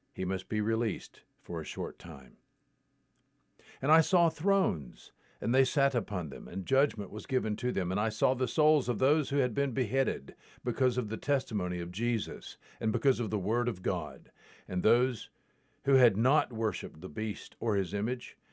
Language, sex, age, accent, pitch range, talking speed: English, male, 50-69, American, 105-135 Hz, 190 wpm